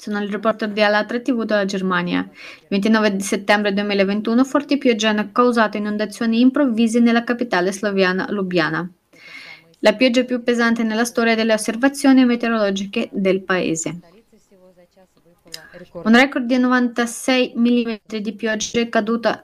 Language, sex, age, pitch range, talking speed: Italian, female, 20-39, 195-235 Hz, 130 wpm